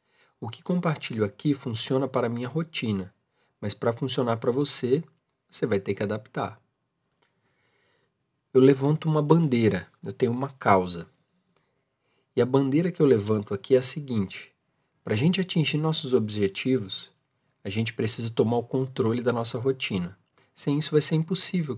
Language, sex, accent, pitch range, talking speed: Portuguese, male, Brazilian, 105-135 Hz, 155 wpm